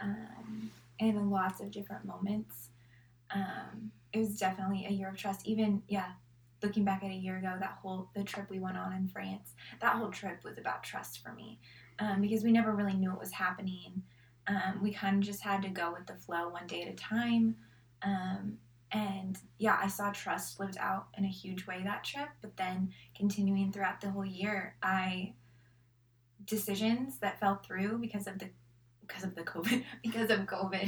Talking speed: 195 wpm